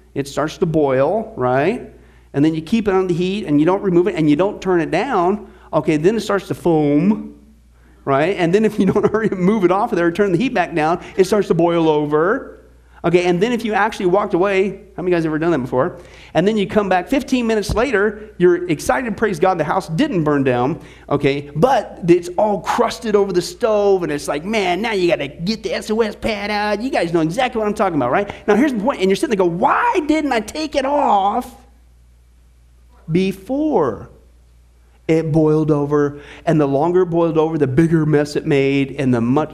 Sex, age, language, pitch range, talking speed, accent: male, 40-59, English, 145-210 Hz, 230 wpm, American